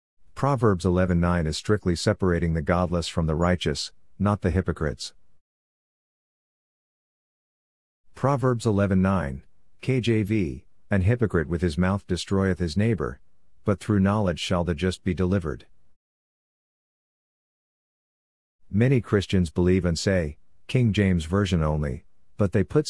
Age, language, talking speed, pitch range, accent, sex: 50-69, English, 115 wpm, 85-105 Hz, American, male